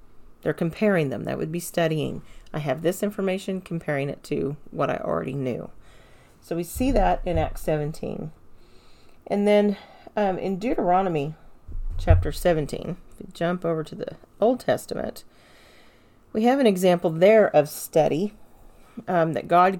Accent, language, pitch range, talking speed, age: American, English, 150-195 Hz, 145 wpm, 40-59